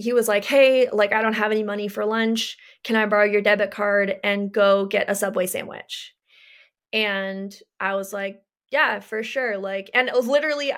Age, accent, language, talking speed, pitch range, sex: 20-39, American, English, 200 wpm, 200-245 Hz, female